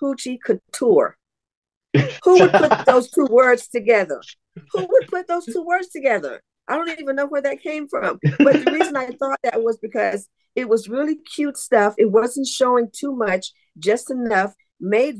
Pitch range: 175-240 Hz